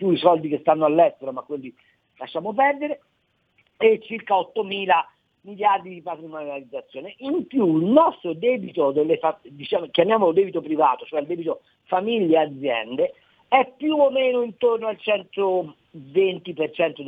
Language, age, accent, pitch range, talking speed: Italian, 50-69, native, 165-275 Hz, 135 wpm